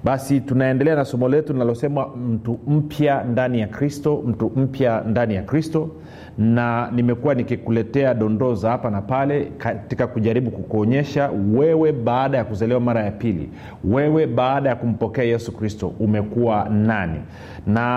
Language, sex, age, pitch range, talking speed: Swahili, male, 40-59, 110-140 Hz, 140 wpm